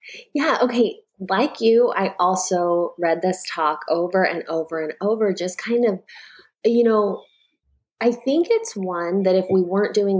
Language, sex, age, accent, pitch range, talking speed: English, female, 20-39, American, 175-230 Hz, 165 wpm